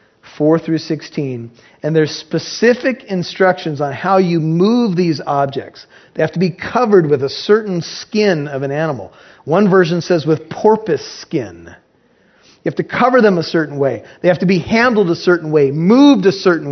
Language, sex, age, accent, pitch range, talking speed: English, male, 40-59, American, 160-210 Hz, 170 wpm